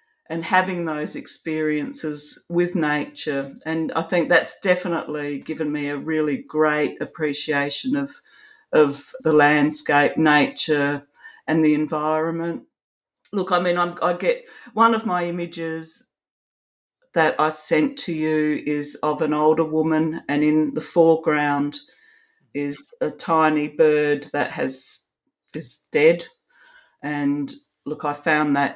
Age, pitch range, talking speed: 50-69, 150-180 Hz, 130 wpm